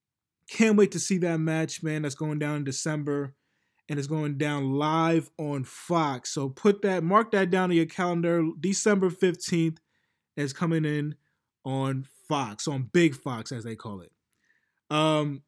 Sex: male